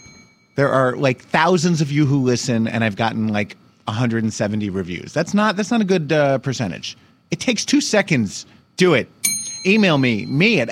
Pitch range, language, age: 115-160 Hz, English, 30-49